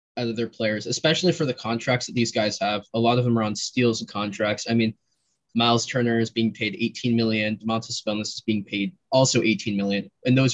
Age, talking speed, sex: 20-39, 220 wpm, male